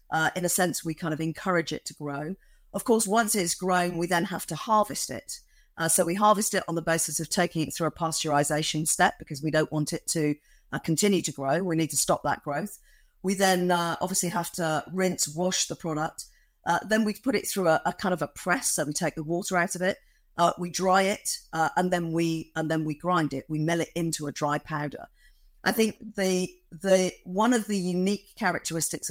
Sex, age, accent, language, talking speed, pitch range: female, 40-59, British, English, 230 wpm, 155-190 Hz